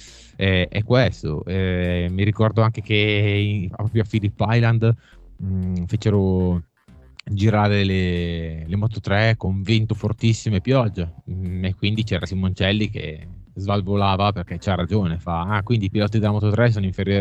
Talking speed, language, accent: 155 wpm, Italian, native